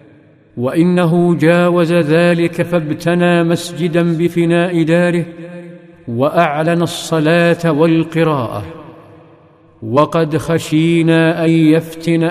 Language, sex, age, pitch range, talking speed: Arabic, male, 50-69, 150-170 Hz, 70 wpm